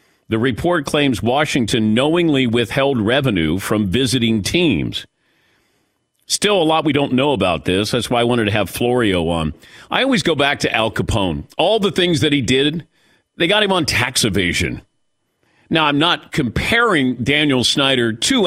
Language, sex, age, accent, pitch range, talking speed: English, male, 50-69, American, 120-165 Hz, 170 wpm